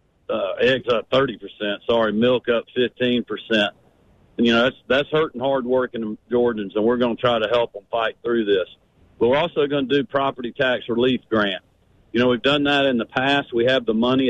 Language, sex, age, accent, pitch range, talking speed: English, male, 50-69, American, 115-135 Hz, 215 wpm